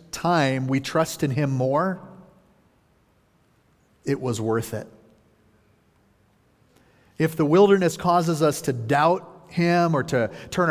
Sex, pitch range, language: male, 140-180 Hz, English